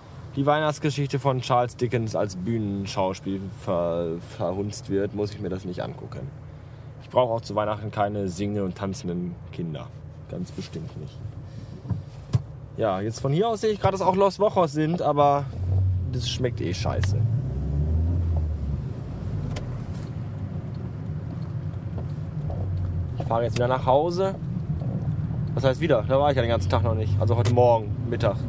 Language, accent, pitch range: German, German, 100-130 Hz